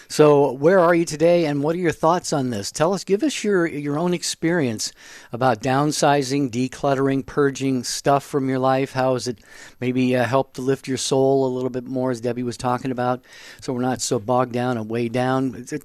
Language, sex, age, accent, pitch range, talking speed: English, male, 50-69, American, 125-150 Hz, 220 wpm